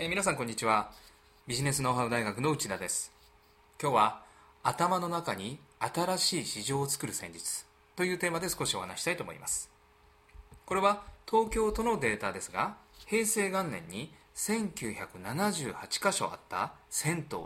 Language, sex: Japanese, male